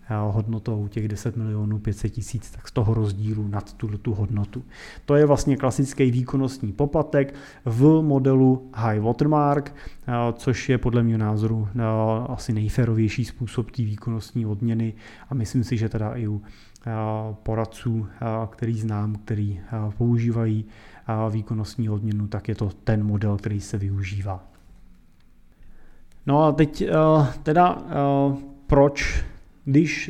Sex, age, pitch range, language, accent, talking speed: male, 30-49, 110-140 Hz, Czech, native, 125 wpm